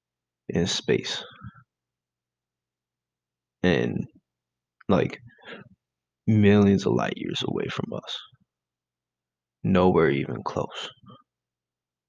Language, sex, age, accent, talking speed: English, male, 20-39, American, 70 wpm